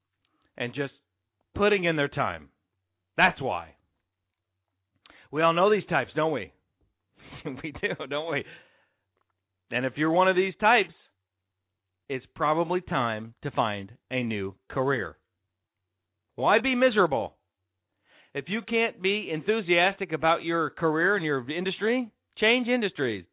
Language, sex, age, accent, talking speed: English, male, 40-59, American, 130 wpm